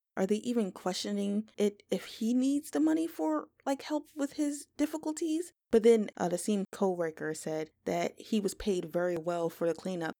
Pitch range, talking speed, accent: 160-215 Hz, 190 wpm, American